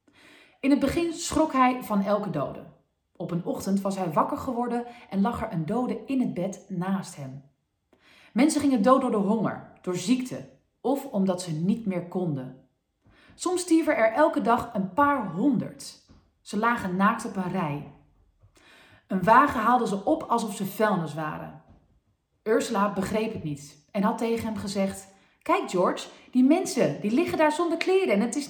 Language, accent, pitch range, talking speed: Dutch, Dutch, 165-240 Hz, 175 wpm